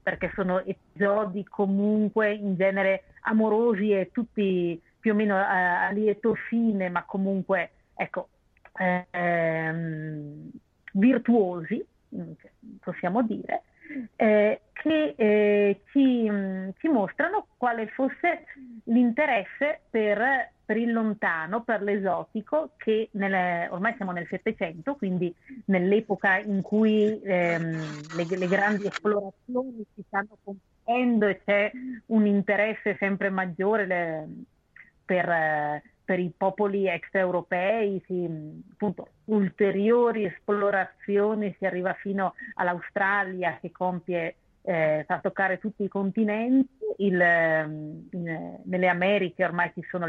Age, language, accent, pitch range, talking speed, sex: 40-59, Italian, native, 180-225 Hz, 110 wpm, female